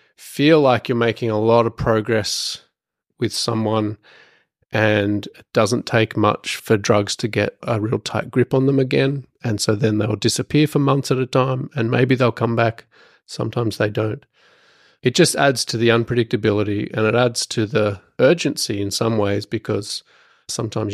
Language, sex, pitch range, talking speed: English, male, 105-130 Hz, 175 wpm